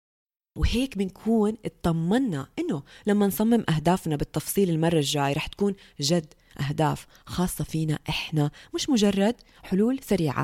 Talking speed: 120 wpm